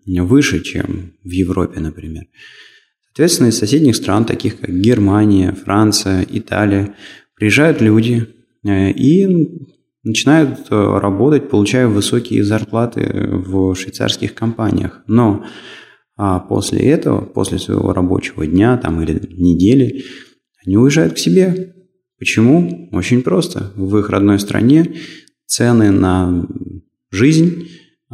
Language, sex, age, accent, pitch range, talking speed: Russian, male, 20-39, native, 95-125 Hz, 105 wpm